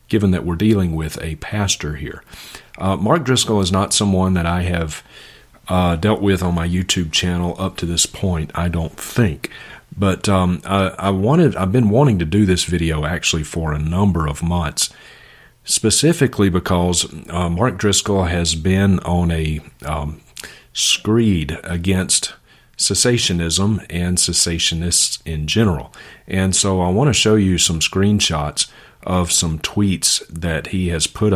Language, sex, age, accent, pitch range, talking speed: English, male, 40-59, American, 80-95 Hz, 155 wpm